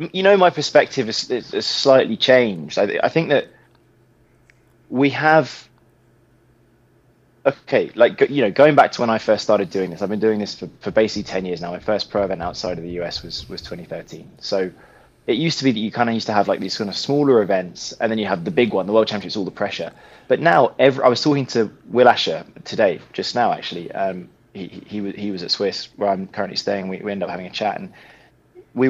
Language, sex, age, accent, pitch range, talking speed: English, male, 20-39, British, 105-135 Hz, 240 wpm